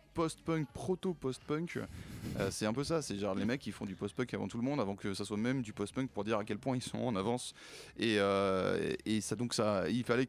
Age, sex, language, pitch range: 20-39, male, French, 105-130 Hz